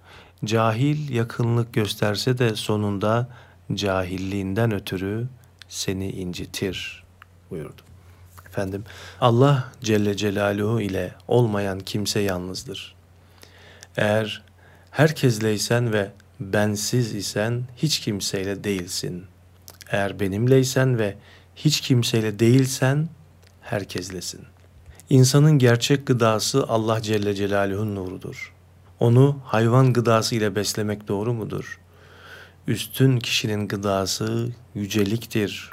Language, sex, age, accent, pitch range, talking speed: Turkish, male, 40-59, native, 95-120 Hz, 85 wpm